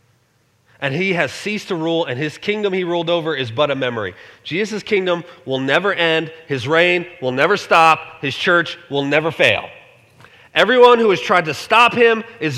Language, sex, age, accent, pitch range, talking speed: English, male, 30-49, American, 155-245 Hz, 185 wpm